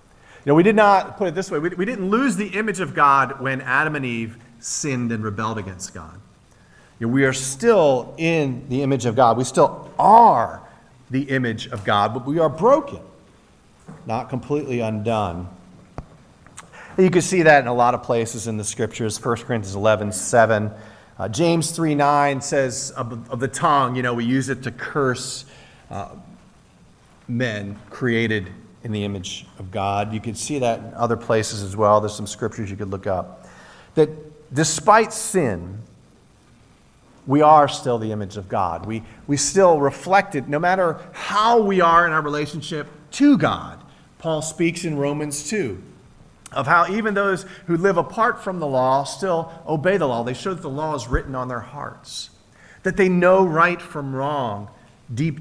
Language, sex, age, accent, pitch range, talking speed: English, male, 40-59, American, 115-160 Hz, 180 wpm